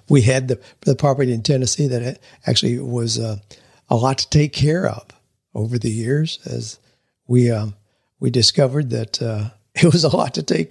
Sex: male